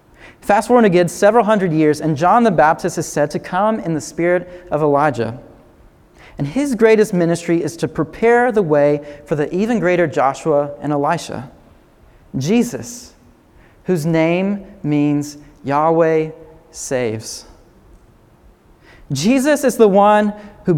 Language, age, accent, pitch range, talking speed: English, 30-49, American, 145-210 Hz, 135 wpm